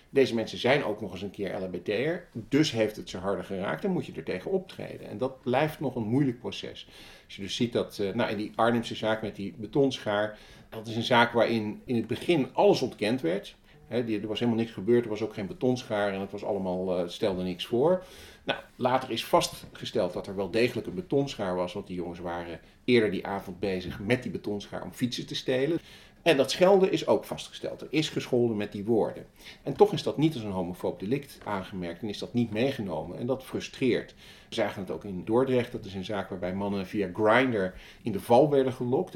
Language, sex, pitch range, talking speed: Dutch, male, 100-130 Hz, 215 wpm